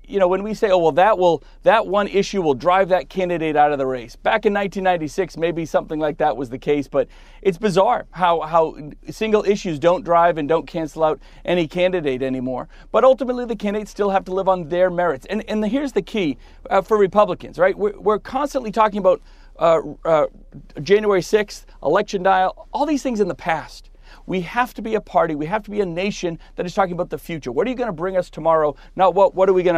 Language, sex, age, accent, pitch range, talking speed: English, male, 40-59, American, 165-210 Hz, 230 wpm